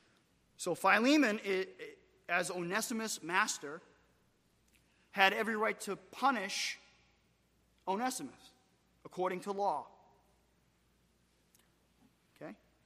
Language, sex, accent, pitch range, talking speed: English, male, American, 200-270 Hz, 70 wpm